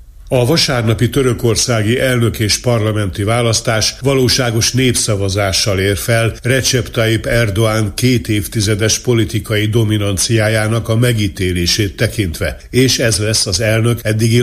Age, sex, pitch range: 60-79, male, 105-125 Hz